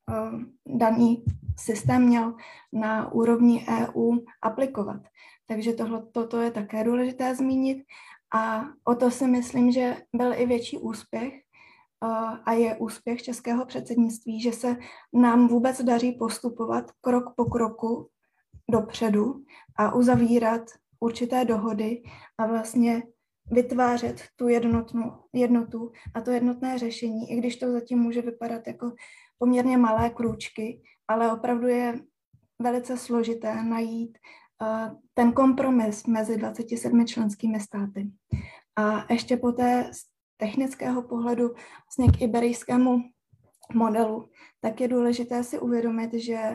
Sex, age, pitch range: female, 20-39, 225-245 Hz